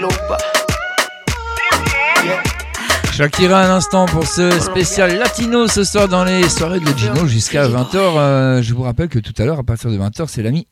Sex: male